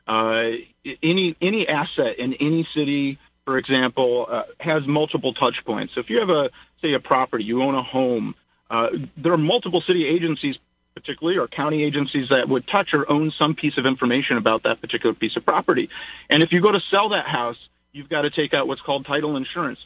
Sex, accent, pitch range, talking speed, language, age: male, American, 125-155 Hz, 205 wpm, English, 40-59